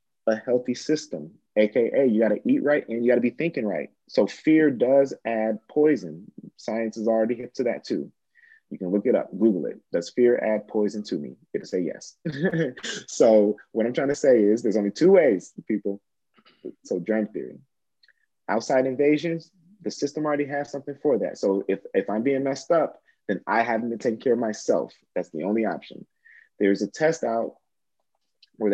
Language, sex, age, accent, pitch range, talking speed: English, male, 30-49, American, 110-155 Hz, 190 wpm